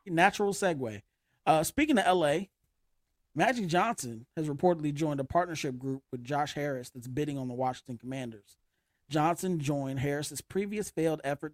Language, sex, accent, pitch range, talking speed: English, male, American, 130-160 Hz, 150 wpm